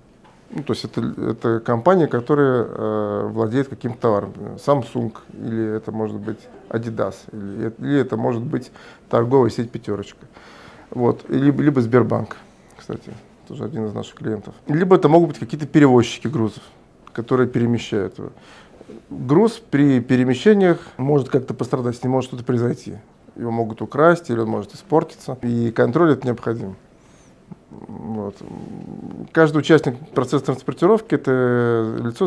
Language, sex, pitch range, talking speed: Russian, male, 115-145 Hz, 140 wpm